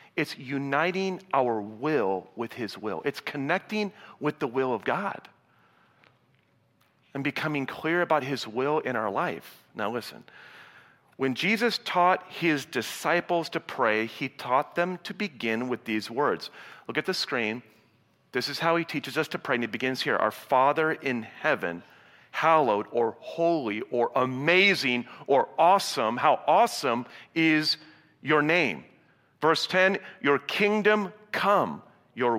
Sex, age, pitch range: male, 40-59, 125-165 Hz